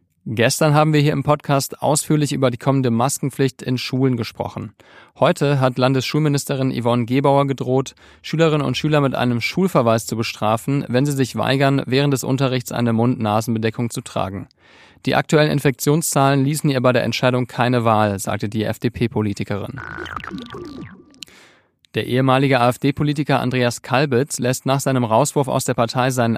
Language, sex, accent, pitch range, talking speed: German, male, German, 120-140 Hz, 150 wpm